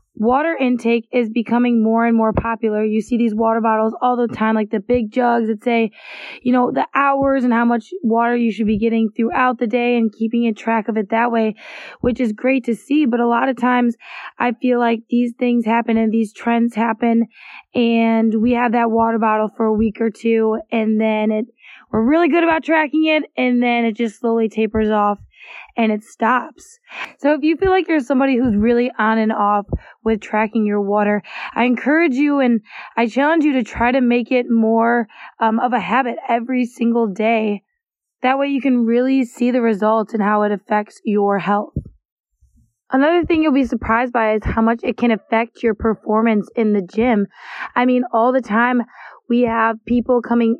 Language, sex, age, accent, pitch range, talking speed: English, female, 20-39, American, 225-250 Hz, 205 wpm